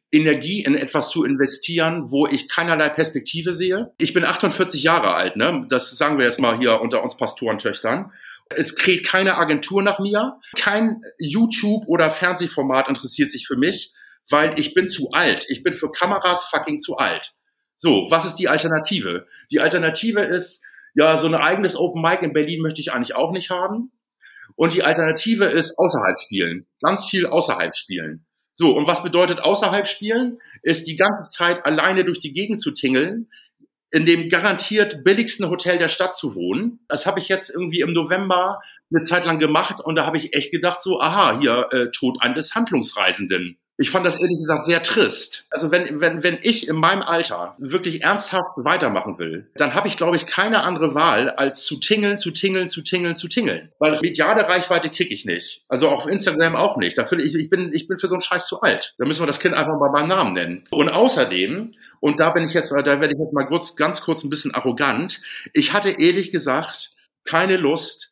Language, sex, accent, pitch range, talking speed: German, male, German, 155-195 Hz, 200 wpm